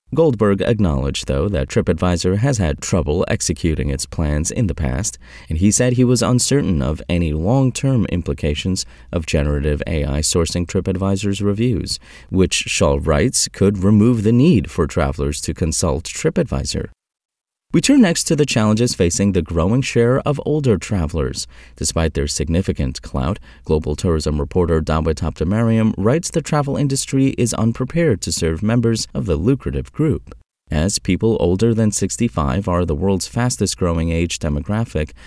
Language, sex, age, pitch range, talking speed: English, male, 30-49, 75-115 Hz, 150 wpm